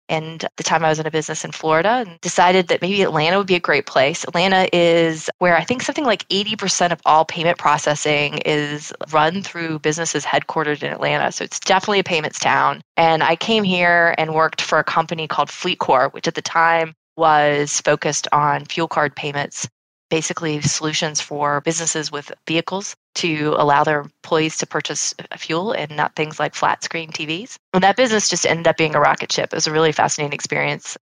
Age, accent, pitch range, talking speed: 20-39, American, 155-180 Hz, 200 wpm